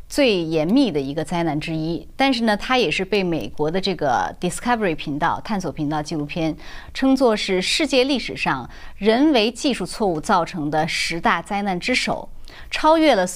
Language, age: Chinese, 30-49